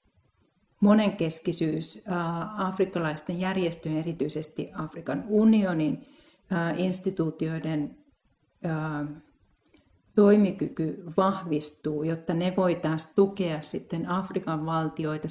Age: 40-59